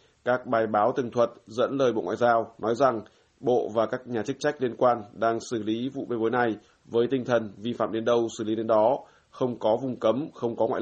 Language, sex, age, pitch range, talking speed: Vietnamese, male, 20-39, 110-125 Hz, 250 wpm